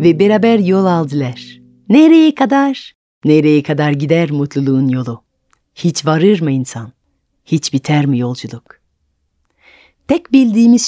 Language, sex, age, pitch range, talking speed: Turkish, female, 30-49, 135-190 Hz, 115 wpm